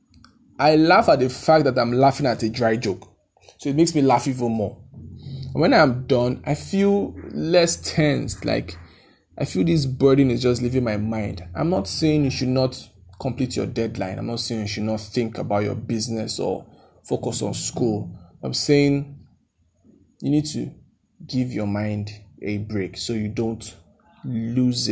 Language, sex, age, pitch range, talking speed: English, male, 20-39, 110-140 Hz, 180 wpm